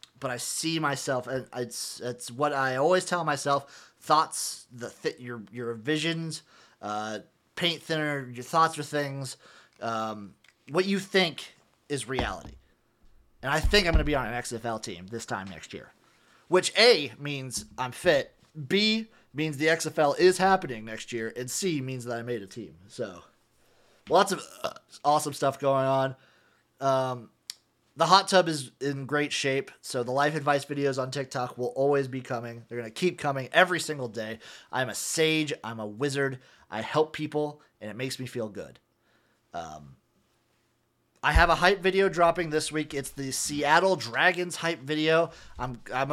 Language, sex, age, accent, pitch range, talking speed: English, male, 30-49, American, 120-160 Hz, 175 wpm